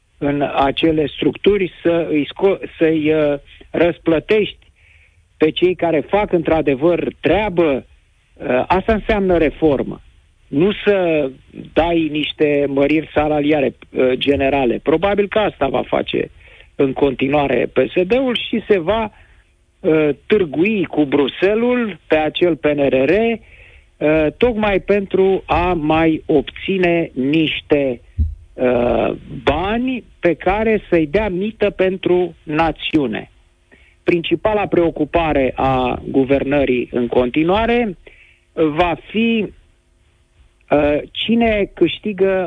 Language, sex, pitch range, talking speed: Romanian, male, 140-190 Hz, 100 wpm